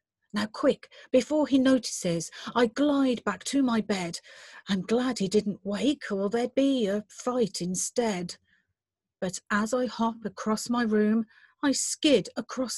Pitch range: 205-270 Hz